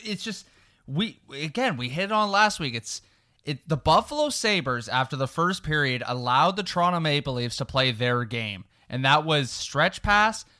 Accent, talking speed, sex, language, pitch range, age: American, 185 wpm, male, English, 125-185 Hz, 20-39